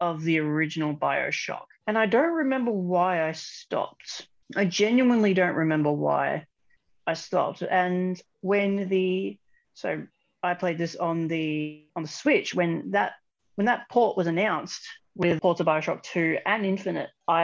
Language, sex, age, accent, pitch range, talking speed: English, female, 40-59, Australian, 155-195 Hz, 155 wpm